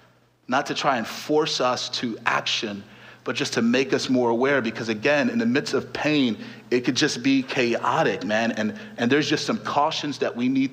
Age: 30-49